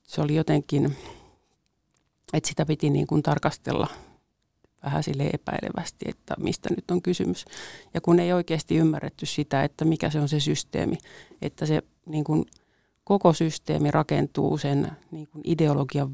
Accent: native